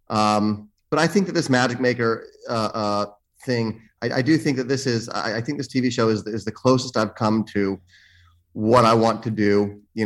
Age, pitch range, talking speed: 30-49, 105-120 Hz, 220 wpm